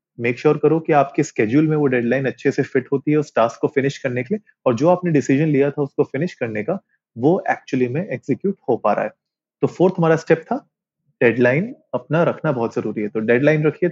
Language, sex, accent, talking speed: Hindi, male, native, 235 wpm